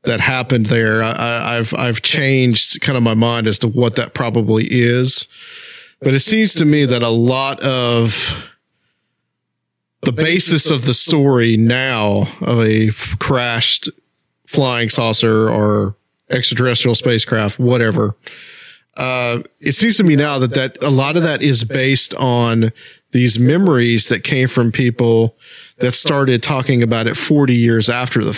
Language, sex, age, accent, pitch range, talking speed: English, male, 40-59, American, 115-130 Hz, 150 wpm